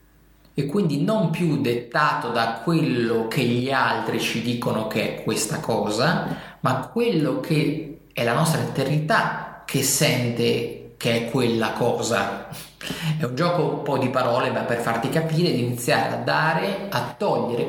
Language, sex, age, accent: Italian, male, 30-49, native